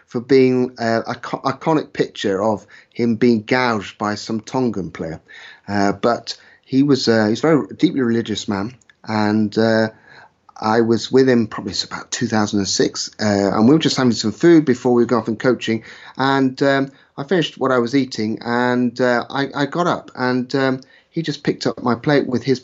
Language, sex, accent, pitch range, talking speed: English, male, British, 110-130 Hz, 190 wpm